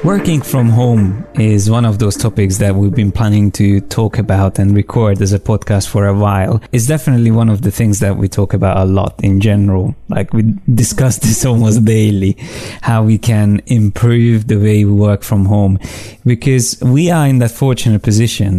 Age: 20-39